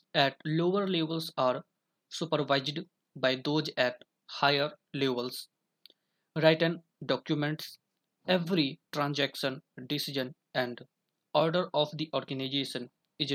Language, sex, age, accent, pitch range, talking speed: English, male, 20-39, Indian, 135-165 Hz, 95 wpm